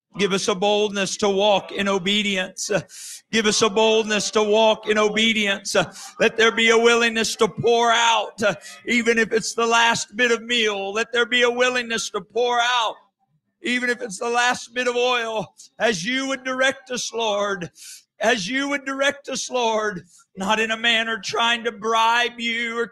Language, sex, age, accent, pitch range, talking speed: English, male, 50-69, American, 200-235 Hz, 180 wpm